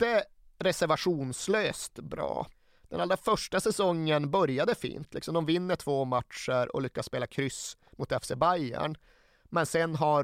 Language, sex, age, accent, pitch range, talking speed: Swedish, male, 30-49, native, 130-155 Hz, 135 wpm